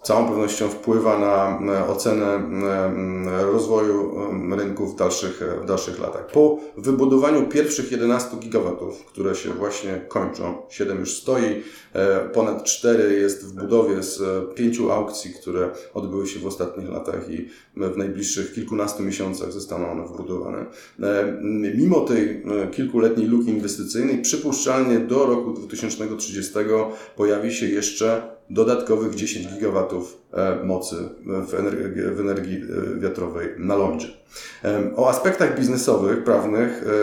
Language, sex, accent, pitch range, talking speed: Polish, male, native, 100-115 Hz, 115 wpm